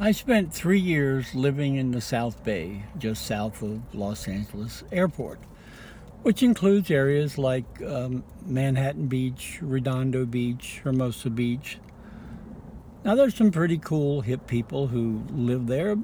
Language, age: English, 60-79